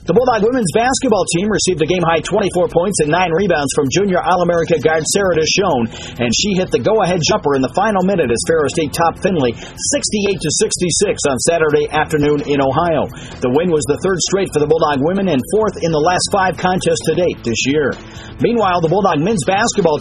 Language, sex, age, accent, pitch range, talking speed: English, male, 40-59, American, 150-195 Hz, 205 wpm